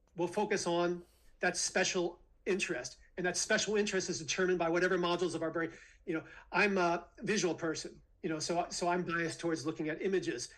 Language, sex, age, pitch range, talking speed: English, male, 40-59, 165-200 Hz, 195 wpm